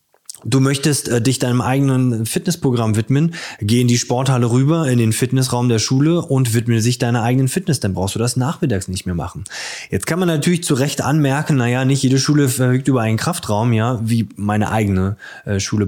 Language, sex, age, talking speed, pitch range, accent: German, male, 20-39, 200 wpm, 110-135 Hz, German